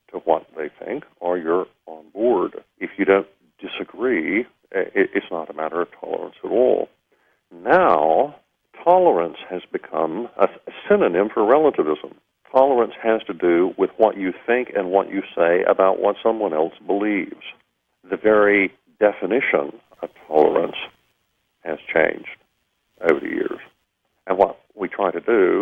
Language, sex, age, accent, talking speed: English, male, 50-69, American, 145 wpm